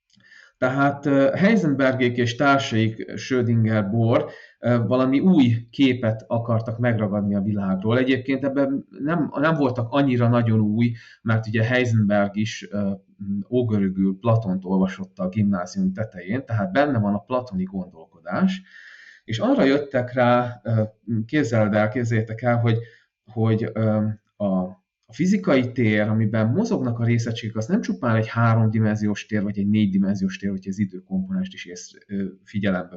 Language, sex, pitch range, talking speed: Hungarian, male, 105-135 Hz, 130 wpm